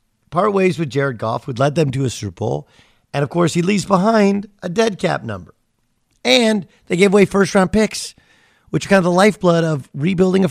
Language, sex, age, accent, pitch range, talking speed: English, male, 50-69, American, 115-175 Hz, 210 wpm